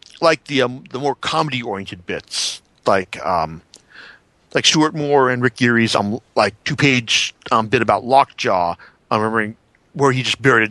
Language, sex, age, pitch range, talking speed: English, male, 40-59, 110-150 Hz, 180 wpm